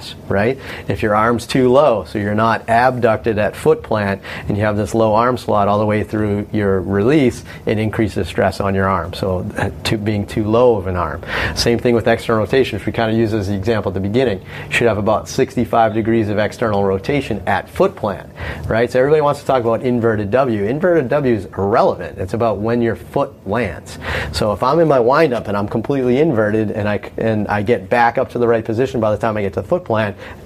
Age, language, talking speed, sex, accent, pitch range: 30-49, English, 235 wpm, male, American, 100-120 Hz